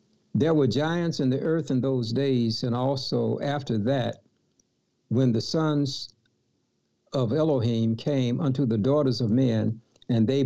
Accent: American